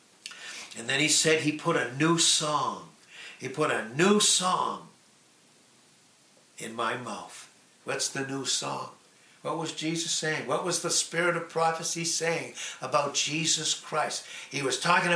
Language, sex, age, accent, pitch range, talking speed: English, male, 60-79, American, 135-170 Hz, 150 wpm